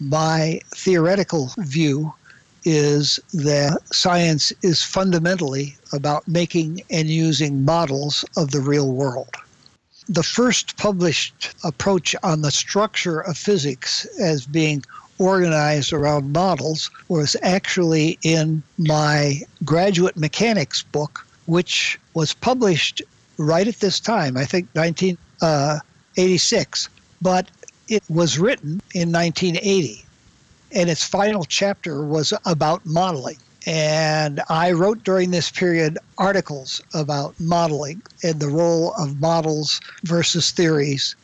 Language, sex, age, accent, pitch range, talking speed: English, male, 60-79, American, 150-185 Hz, 115 wpm